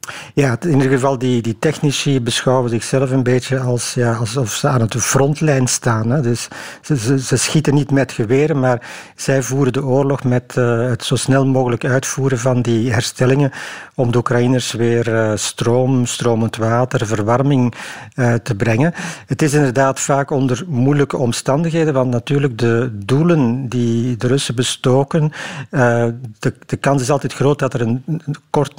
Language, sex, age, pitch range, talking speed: Dutch, male, 50-69, 120-140 Hz, 170 wpm